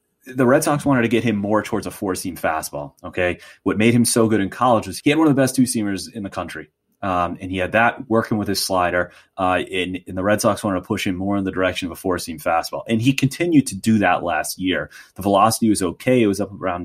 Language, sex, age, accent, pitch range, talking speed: English, male, 30-49, American, 90-115 Hz, 265 wpm